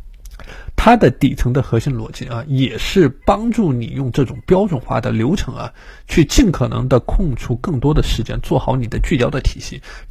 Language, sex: Chinese, male